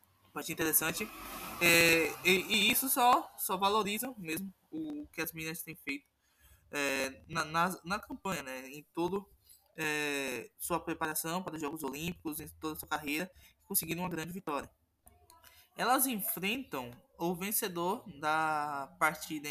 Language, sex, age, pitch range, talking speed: Portuguese, male, 20-39, 150-185 Hz, 140 wpm